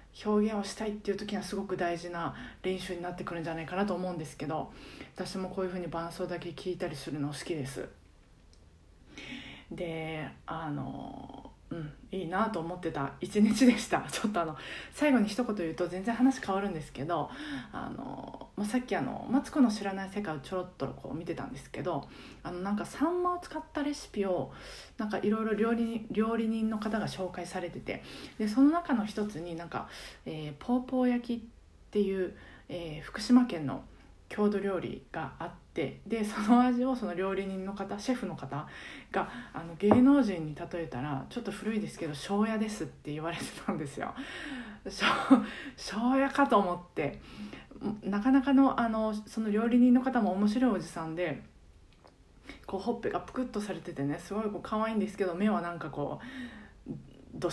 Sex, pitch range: female, 170-225 Hz